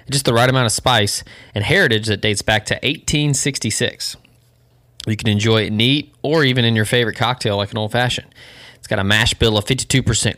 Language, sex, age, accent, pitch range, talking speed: English, male, 20-39, American, 110-130 Hz, 200 wpm